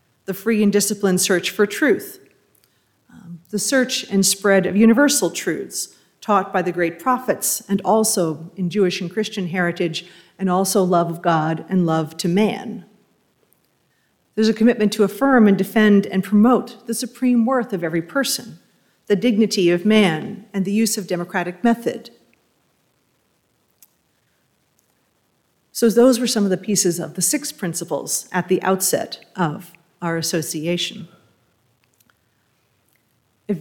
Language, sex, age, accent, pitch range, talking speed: English, female, 40-59, American, 170-215 Hz, 140 wpm